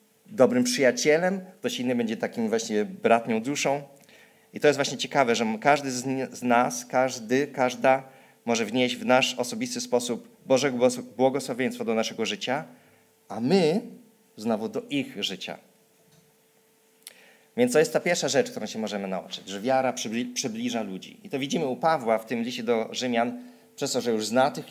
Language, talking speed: Polish, 165 wpm